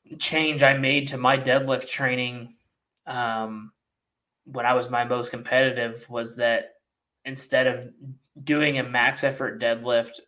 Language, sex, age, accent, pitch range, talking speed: English, male, 20-39, American, 115-130 Hz, 135 wpm